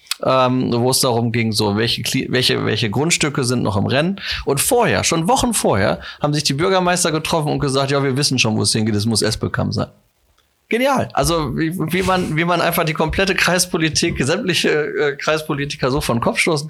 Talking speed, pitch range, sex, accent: 200 wpm, 125-175 Hz, male, German